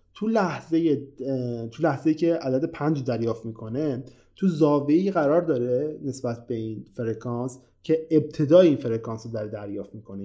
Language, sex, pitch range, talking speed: Persian, male, 120-160 Hz, 145 wpm